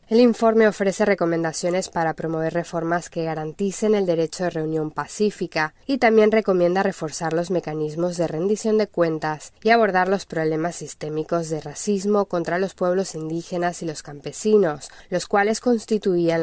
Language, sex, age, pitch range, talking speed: Spanish, female, 10-29, 160-195 Hz, 150 wpm